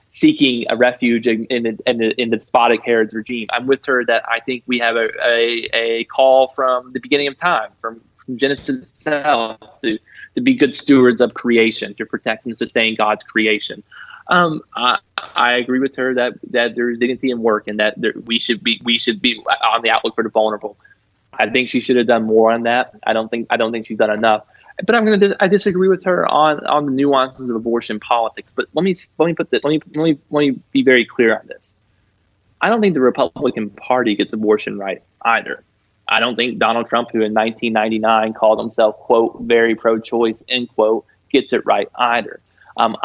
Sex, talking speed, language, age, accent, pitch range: male, 215 wpm, English, 20-39, American, 110-130 Hz